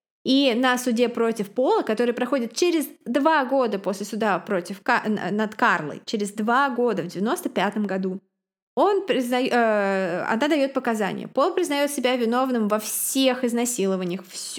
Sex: female